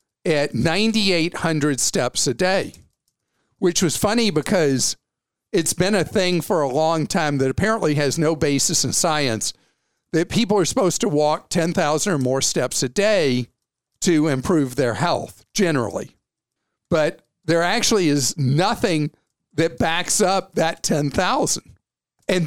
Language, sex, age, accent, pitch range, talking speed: English, male, 50-69, American, 150-200 Hz, 140 wpm